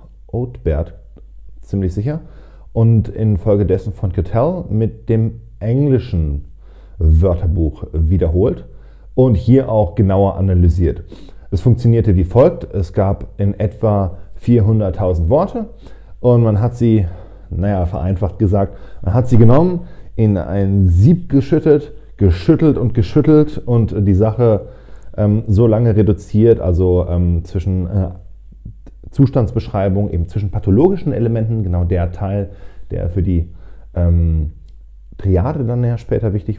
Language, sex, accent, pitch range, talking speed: German, male, German, 85-110 Hz, 120 wpm